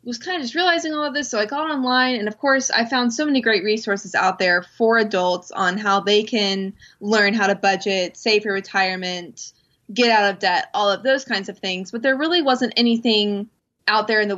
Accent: American